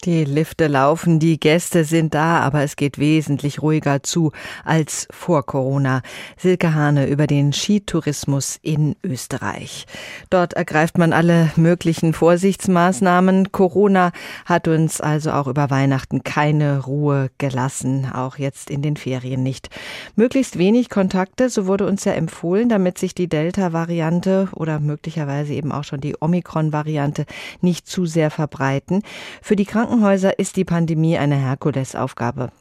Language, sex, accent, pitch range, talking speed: German, female, German, 145-180 Hz, 140 wpm